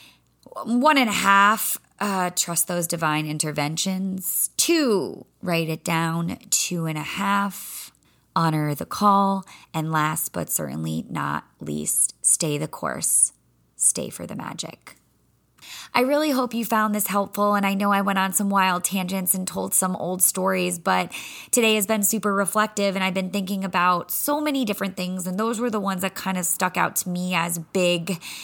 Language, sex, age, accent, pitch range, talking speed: English, female, 20-39, American, 165-200 Hz, 175 wpm